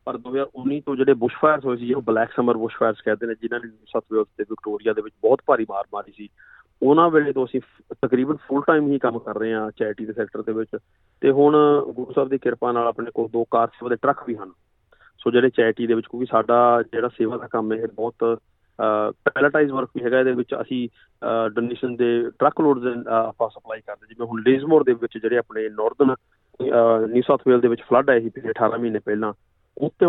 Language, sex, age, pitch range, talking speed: Punjabi, male, 30-49, 110-130 Hz, 210 wpm